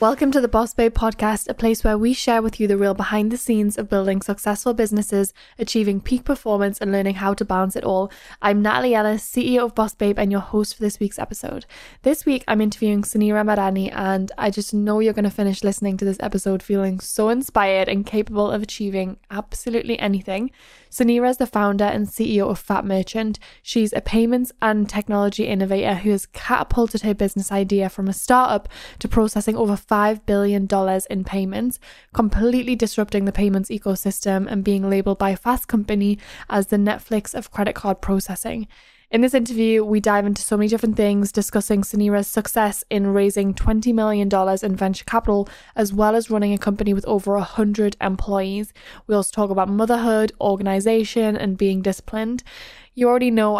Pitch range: 200-225 Hz